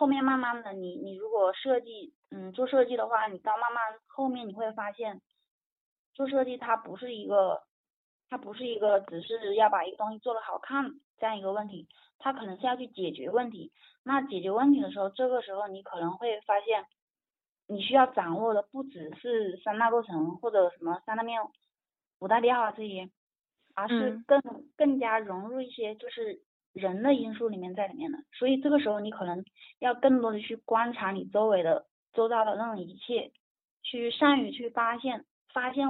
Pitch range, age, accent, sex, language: 200-250 Hz, 20-39, native, female, Chinese